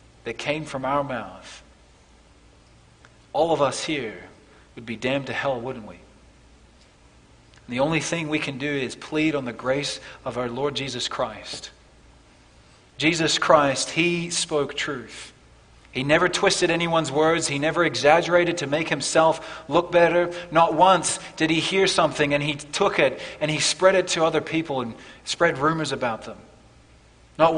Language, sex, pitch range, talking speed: English, male, 120-160 Hz, 160 wpm